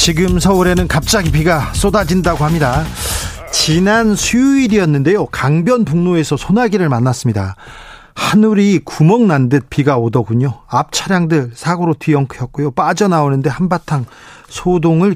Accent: native